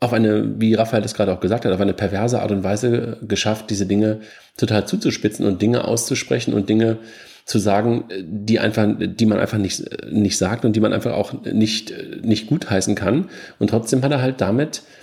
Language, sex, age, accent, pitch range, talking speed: German, male, 40-59, German, 105-135 Hz, 200 wpm